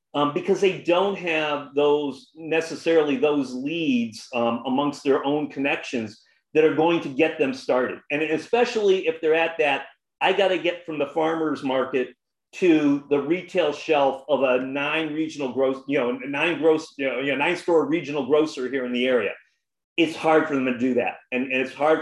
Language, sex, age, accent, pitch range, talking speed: English, male, 40-59, American, 135-190 Hz, 190 wpm